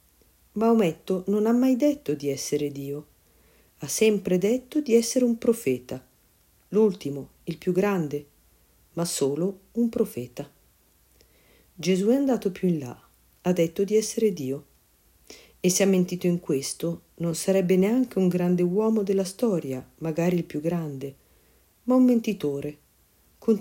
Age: 50-69